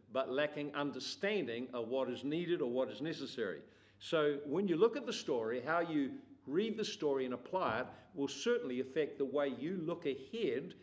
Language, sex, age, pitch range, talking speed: English, male, 50-69, 125-170 Hz, 190 wpm